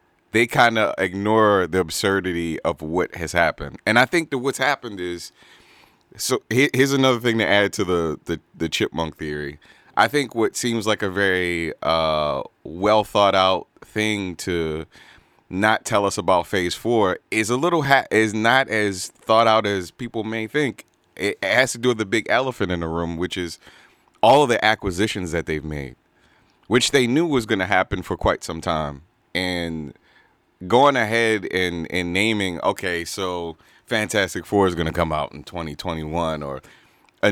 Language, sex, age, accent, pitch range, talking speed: English, male, 30-49, American, 85-115 Hz, 180 wpm